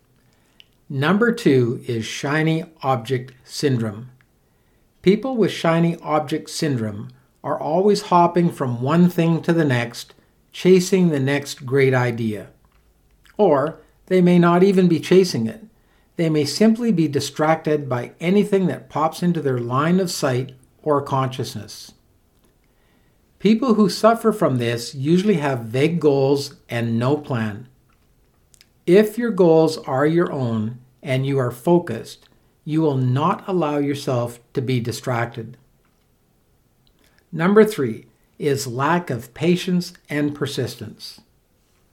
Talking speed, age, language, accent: 125 wpm, 60-79, English, American